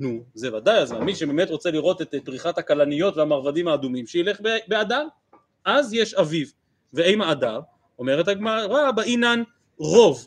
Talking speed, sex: 140 wpm, male